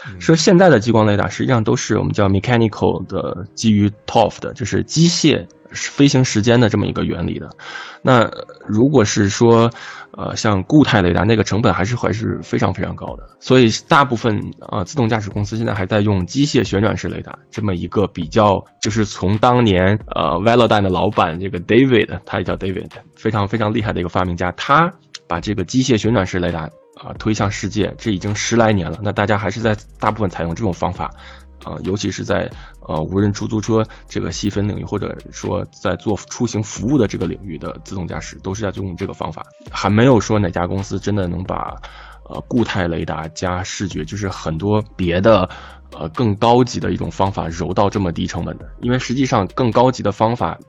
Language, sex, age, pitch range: Chinese, male, 20-39, 90-115 Hz